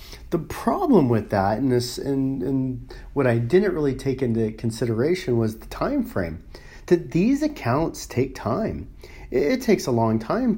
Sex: male